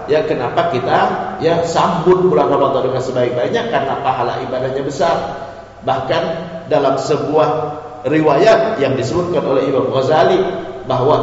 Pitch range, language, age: 100-150 Hz, Indonesian, 40-59